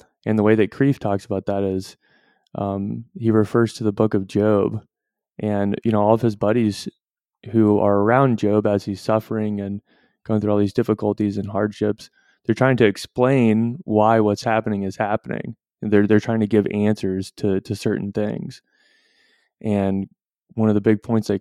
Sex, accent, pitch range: male, American, 105-120 Hz